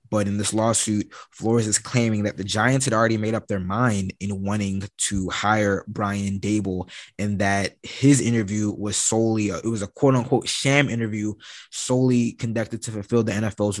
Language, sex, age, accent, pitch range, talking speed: English, male, 20-39, American, 100-120 Hz, 180 wpm